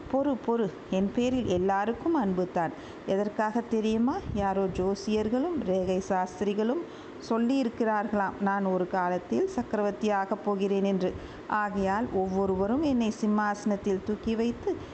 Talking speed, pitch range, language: 100 wpm, 185-225 Hz, Tamil